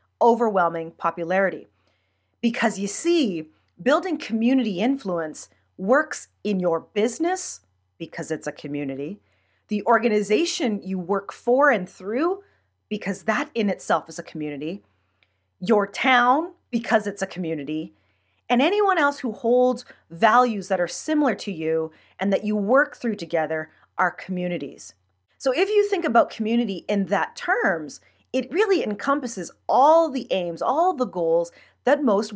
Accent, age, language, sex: American, 30-49, English, female